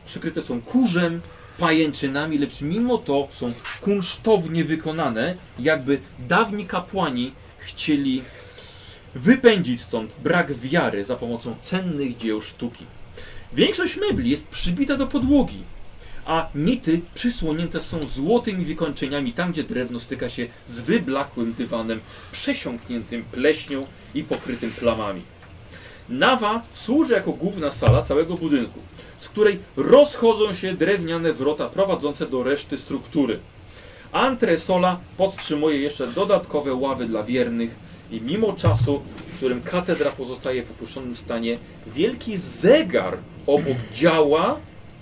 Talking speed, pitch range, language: 115 wpm, 120-180 Hz, Polish